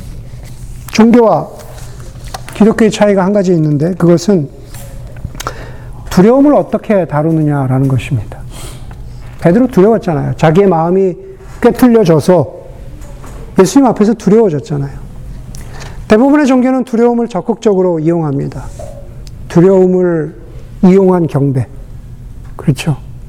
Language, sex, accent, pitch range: Korean, male, native, 130-200 Hz